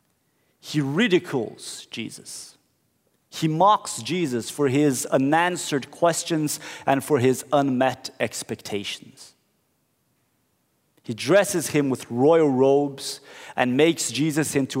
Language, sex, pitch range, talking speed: English, male, 130-175 Hz, 100 wpm